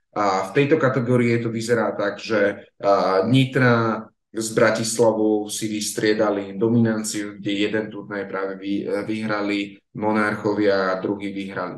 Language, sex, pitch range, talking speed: Slovak, male, 100-120 Hz, 120 wpm